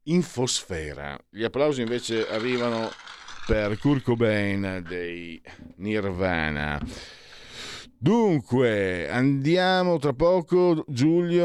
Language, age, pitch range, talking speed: Italian, 50-69, 95-135 Hz, 80 wpm